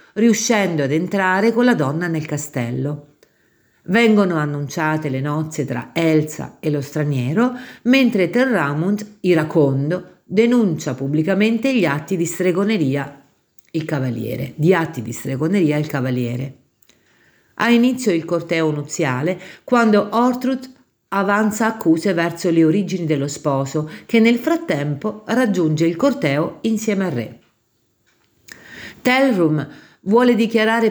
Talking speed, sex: 115 wpm, female